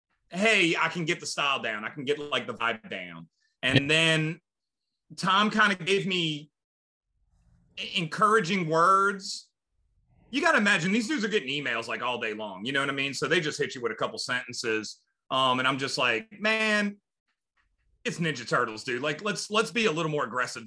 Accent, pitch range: American, 130-195 Hz